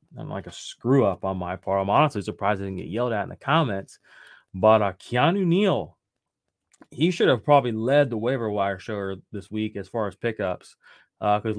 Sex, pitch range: male, 100-125 Hz